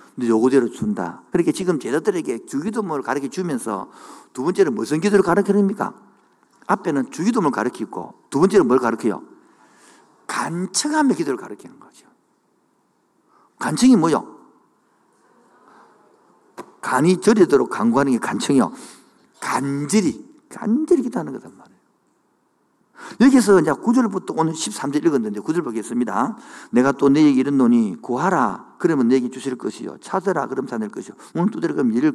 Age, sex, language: 50-69, male, Korean